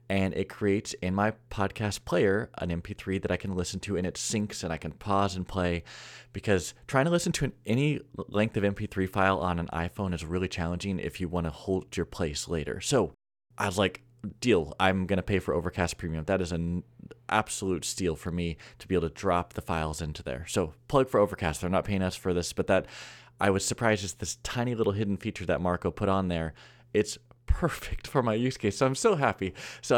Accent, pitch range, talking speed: American, 90-120 Hz, 225 wpm